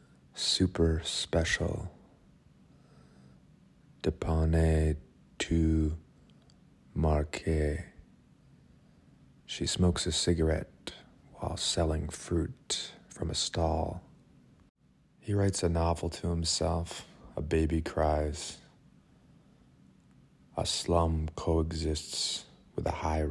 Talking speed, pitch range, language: 75 wpm, 75-85 Hz, English